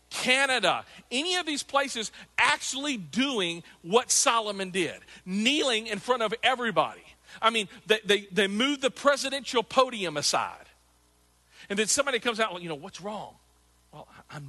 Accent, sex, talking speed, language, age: American, male, 150 wpm, English, 40-59